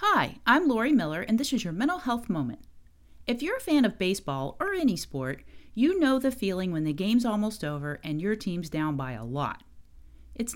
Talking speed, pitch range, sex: 210 wpm, 150-245 Hz, female